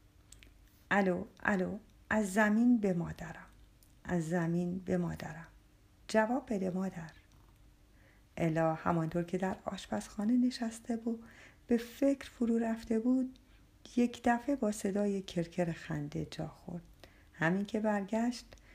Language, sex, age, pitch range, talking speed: Persian, female, 50-69, 165-225 Hz, 115 wpm